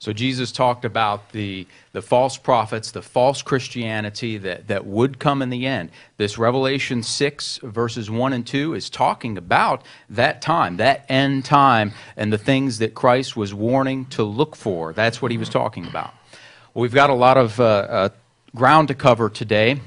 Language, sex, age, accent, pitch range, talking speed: English, male, 40-59, American, 110-140 Hz, 180 wpm